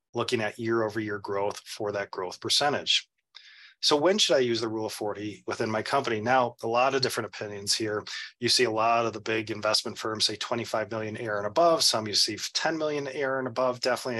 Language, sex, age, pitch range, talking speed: English, male, 30-49, 110-135 Hz, 215 wpm